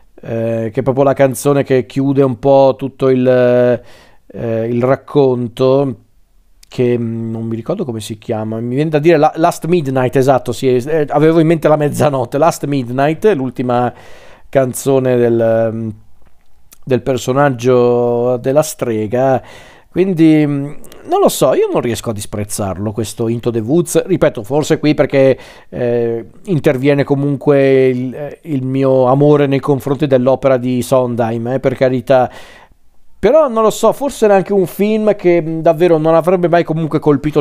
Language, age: Italian, 40-59